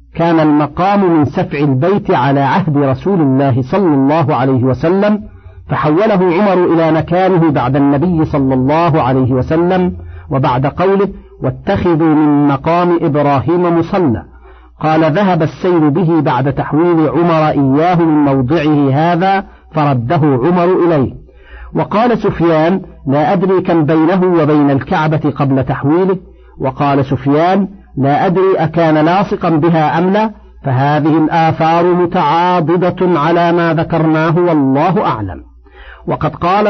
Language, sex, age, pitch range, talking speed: Arabic, male, 50-69, 145-180 Hz, 120 wpm